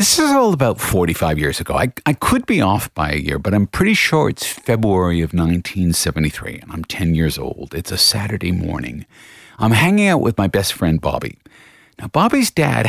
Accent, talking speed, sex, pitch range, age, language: American, 200 wpm, male, 80-115 Hz, 50-69, English